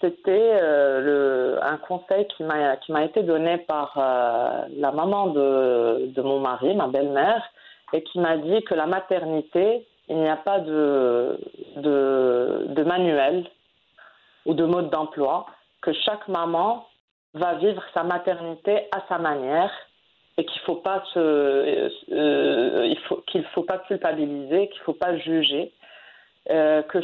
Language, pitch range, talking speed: English, 155-190 Hz, 135 wpm